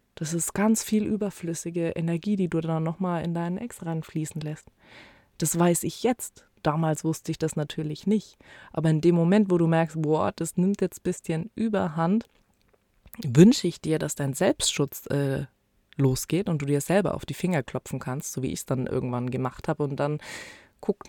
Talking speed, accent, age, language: 190 wpm, German, 20-39, German